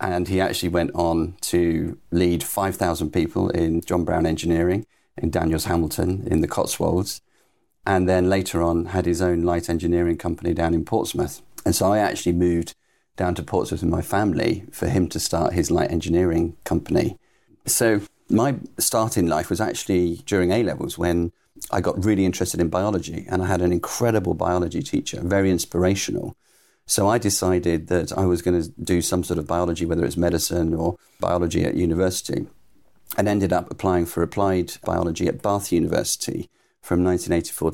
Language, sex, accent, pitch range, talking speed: English, male, British, 85-95 Hz, 170 wpm